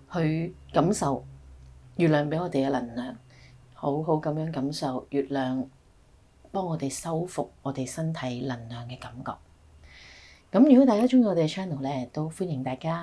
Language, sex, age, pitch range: Chinese, female, 30-49, 135-185 Hz